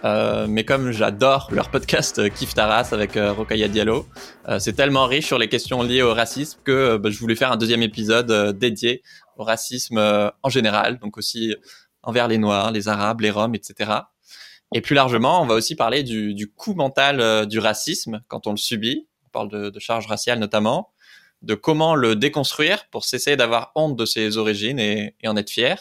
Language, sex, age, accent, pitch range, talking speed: French, male, 20-39, French, 110-130 Hz, 210 wpm